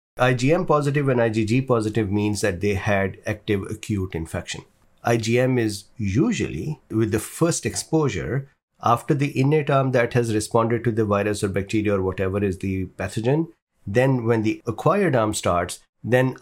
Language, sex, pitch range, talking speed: English, male, 105-135 Hz, 155 wpm